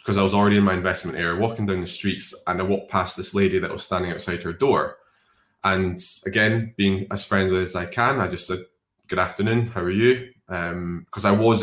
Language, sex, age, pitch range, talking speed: English, male, 20-39, 90-100 Hz, 225 wpm